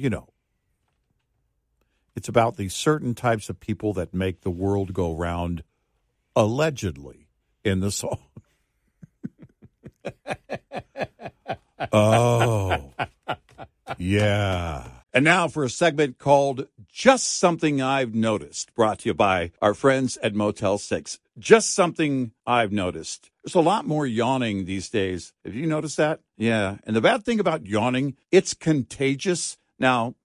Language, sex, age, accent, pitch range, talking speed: English, male, 60-79, American, 105-150 Hz, 130 wpm